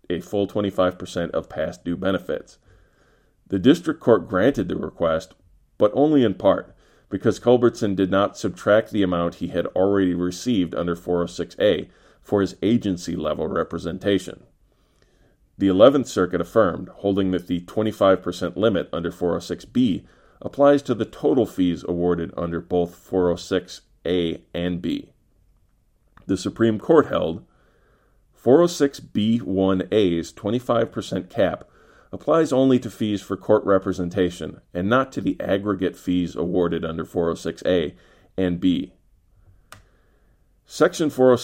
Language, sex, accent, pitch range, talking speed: English, male, American, 90-105 Hz, 120 wpm